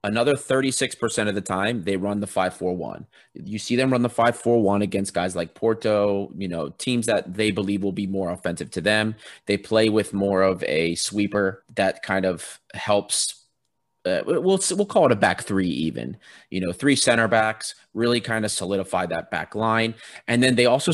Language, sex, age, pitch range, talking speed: English, male, 30-49, 95-120 Hz, 205 wpm